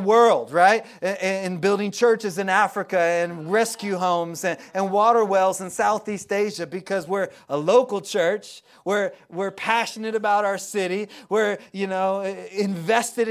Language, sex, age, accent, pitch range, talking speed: English, male, 30-49, American, 170-210 Hz, 140 wpm